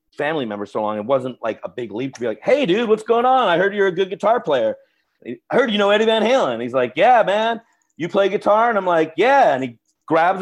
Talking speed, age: 265 wpm, 40-59